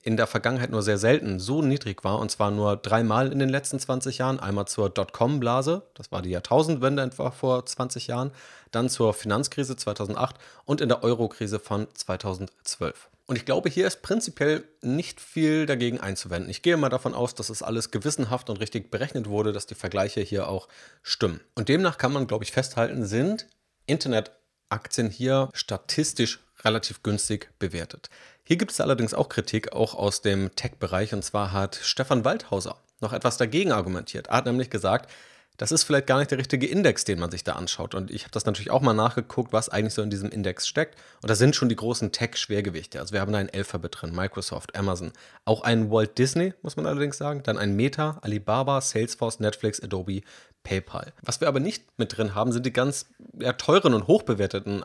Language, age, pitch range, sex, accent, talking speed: German, 30-49, 100-130 Hz, male, German, 195 wpm